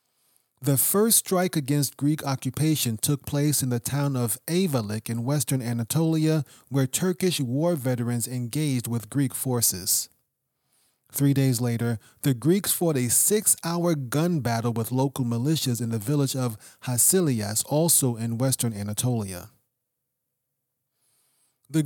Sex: male